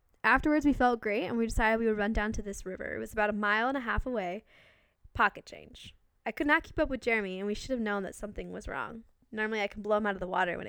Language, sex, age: English, female, 10-29